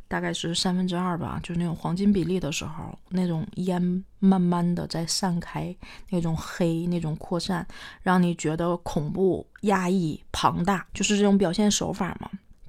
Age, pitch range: 20-39, 180-220 Hz